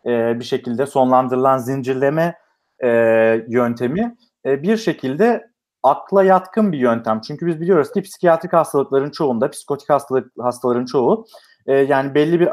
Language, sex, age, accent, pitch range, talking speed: Turkish, male, 40-59, native, 125-180 Hz, 140 wpm